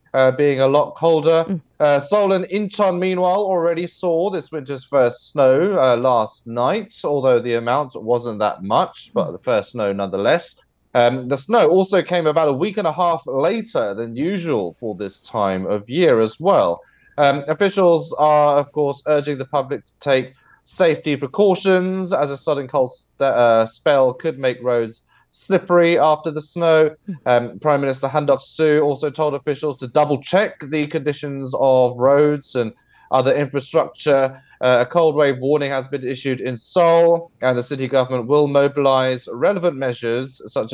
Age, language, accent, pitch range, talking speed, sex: 20-39, English, British, 125-160 Hz, 170 wpm, male